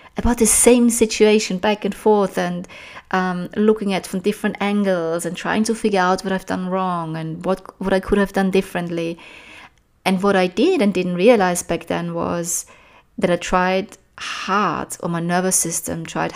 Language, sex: English, female